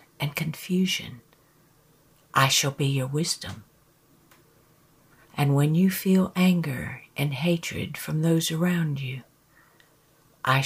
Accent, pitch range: American, 150-175 Hz